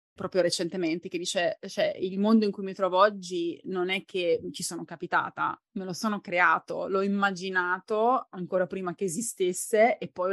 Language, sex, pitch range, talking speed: Italian, female, 175-210 Hz, 175 wpm